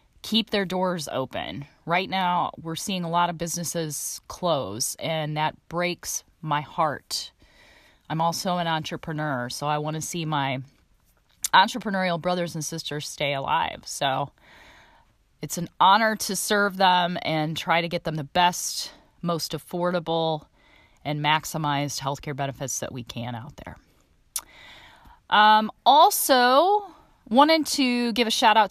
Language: English